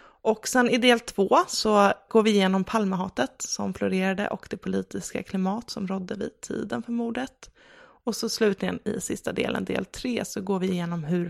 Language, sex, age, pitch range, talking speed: English, female, 20-39, 190-235 Hz, 185 wpm